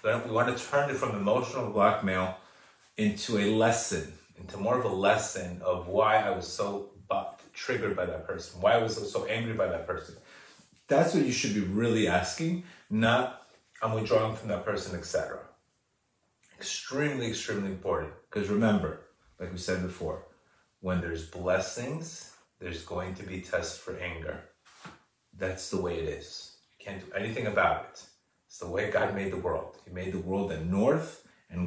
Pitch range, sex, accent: 95-115 Hz, male, American